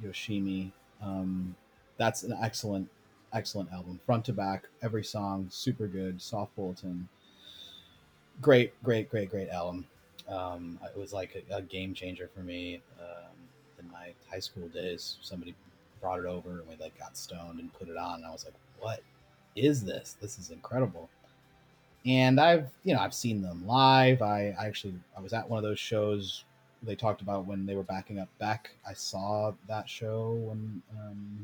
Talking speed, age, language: 180 wpm, 30-49, English